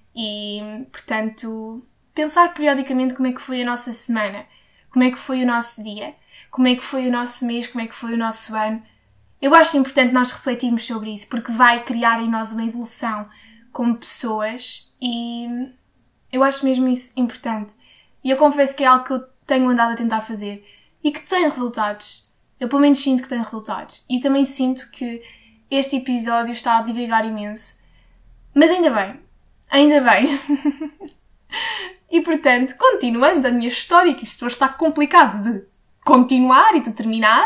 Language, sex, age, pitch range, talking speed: Portuguese, female, 10-29, 230-275 Hz, 175 wpm